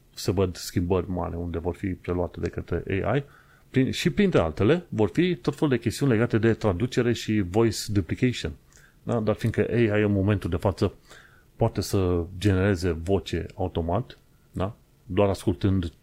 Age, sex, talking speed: 30-49, male, 160 wpm